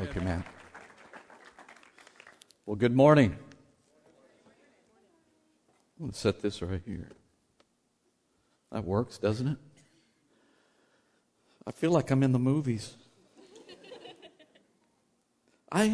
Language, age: English, 50-69